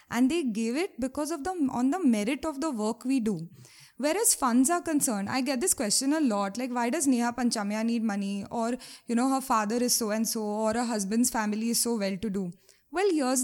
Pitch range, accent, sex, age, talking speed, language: 215-275 Hz, Indian, female, 20-39, 225 wpm, English